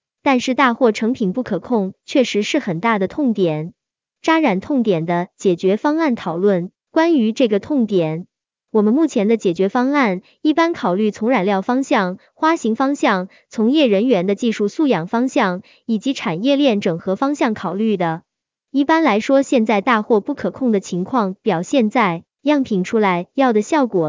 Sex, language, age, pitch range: male, Chinese, 20-39, 190-270 Hz